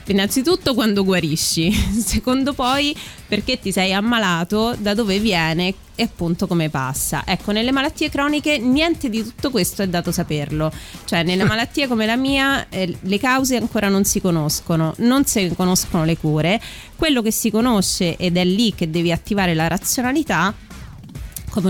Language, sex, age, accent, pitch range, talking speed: Italian, female, 30-49, native, 170-225 Hz, 160 wpm